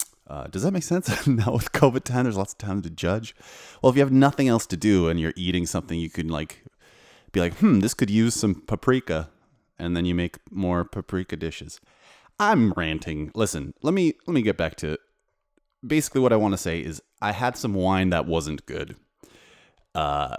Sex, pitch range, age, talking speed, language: male, 85-115 Hz, 30-49, 210 wpm, English